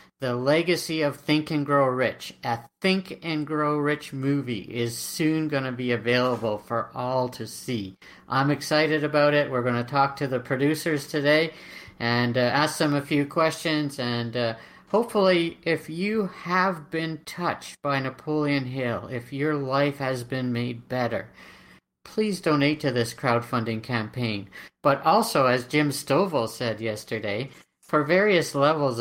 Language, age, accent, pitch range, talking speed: English, 50-69, American, 120-150 Hz, 155 wpm